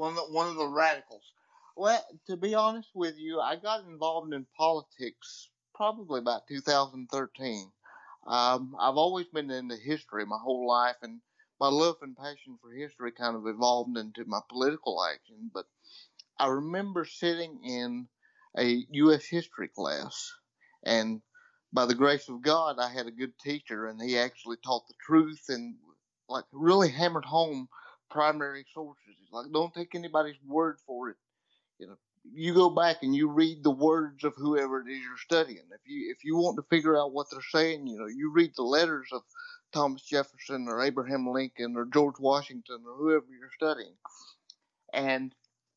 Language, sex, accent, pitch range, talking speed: English, male, American, 130-170 Hz, 170 wpm